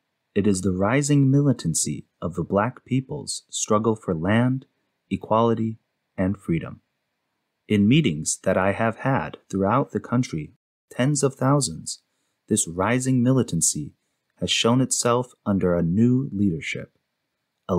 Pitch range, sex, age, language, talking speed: 100-130 Hz, male, 30-49, English, 130 wpm